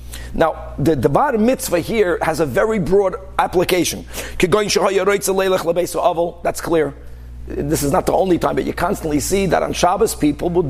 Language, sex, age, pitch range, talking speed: English, male, 50-69, 140-215 Hz, 155 wpm